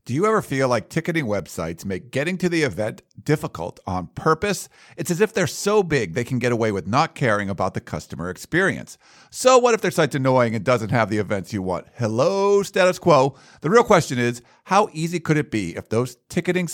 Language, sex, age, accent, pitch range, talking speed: English, male, 50-69, American, 120-165 Hz, 215 wpm